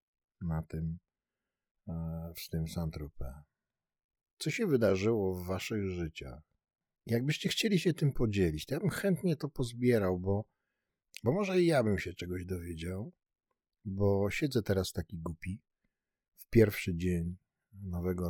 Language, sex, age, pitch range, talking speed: Polish, male, 50-69, 80-120 Hz, 130 wpm